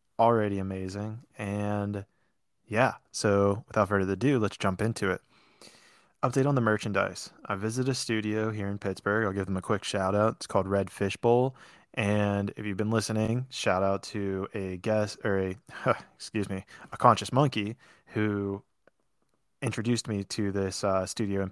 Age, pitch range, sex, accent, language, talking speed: 20-39, 100-110 Hz, male, American, English, 165 wpm